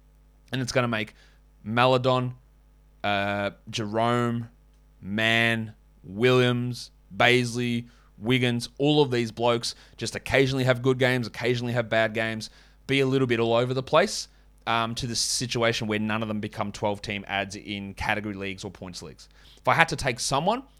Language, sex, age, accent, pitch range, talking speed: English, male, 20-39, Australian, 110-130 Hz, 160 wpm